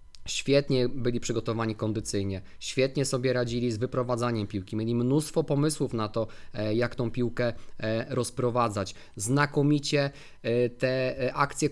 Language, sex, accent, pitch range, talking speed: Polish, male, native, 110-140 Hz, 115 wpm